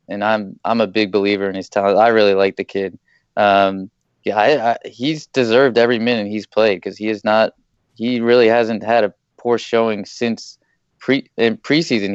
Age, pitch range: 20-39, 100-115 Hz